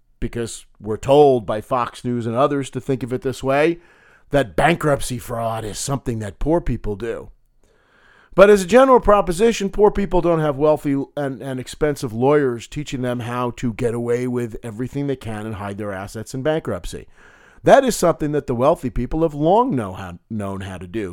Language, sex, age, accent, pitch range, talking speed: English, male, 40-59, American, 115-155 Hz, 185 wpm